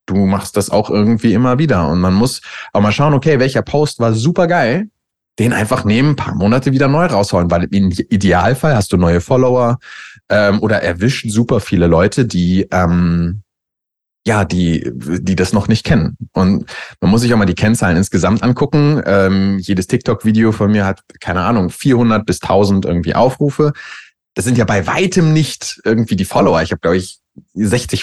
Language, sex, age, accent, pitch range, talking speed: German, male, 30-49, German, 95-125 Hz, 185 wpm